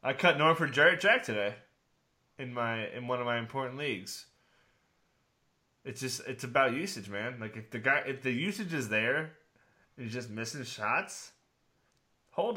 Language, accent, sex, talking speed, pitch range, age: English, American, male, 160 wpm, 120-155 Hz, 20-39